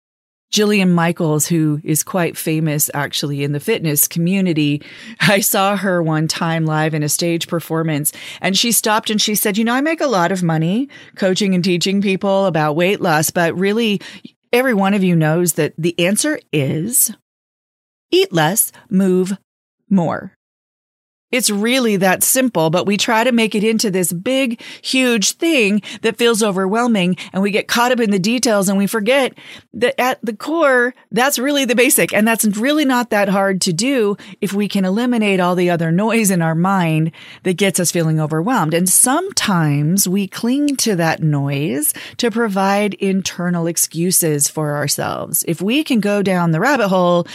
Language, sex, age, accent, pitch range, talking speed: English, female, 40-59, American, 165-220 Hz, 175 wpm